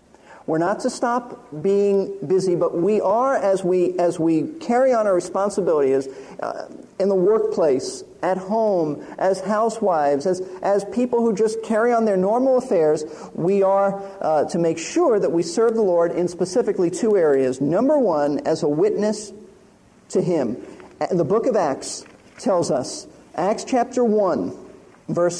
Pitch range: 185-240 Hz